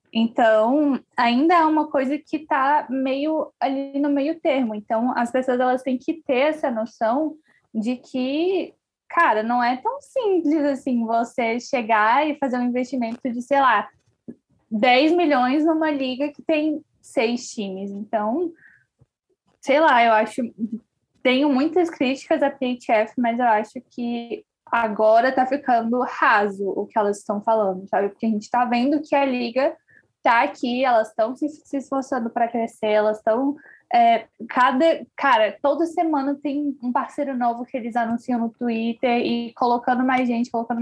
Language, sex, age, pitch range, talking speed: Portuguese, female, 10-29, 230-295 Hz, 160 wpm